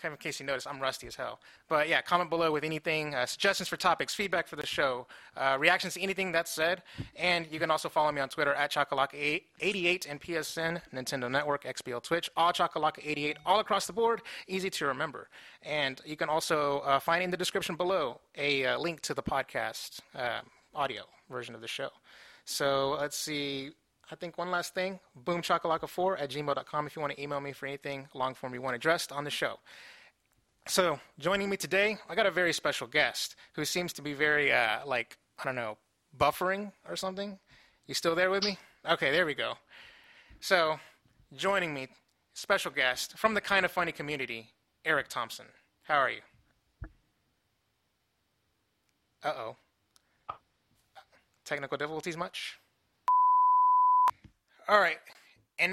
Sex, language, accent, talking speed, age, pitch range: male, English, American, 175 wpm, 30-49, 145-180 Hz